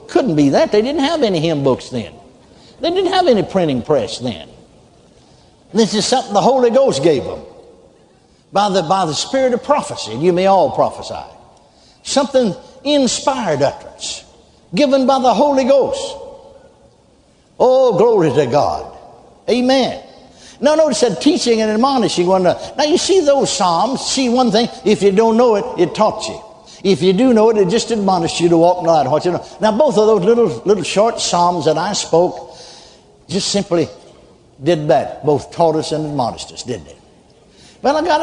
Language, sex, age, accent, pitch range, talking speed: English, male, 60-79, American, 185-275 Hz, 185 wpm